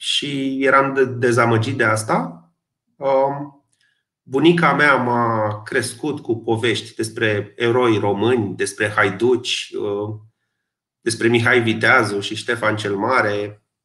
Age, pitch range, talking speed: 30-49, 115-175 Hz, 100 wpm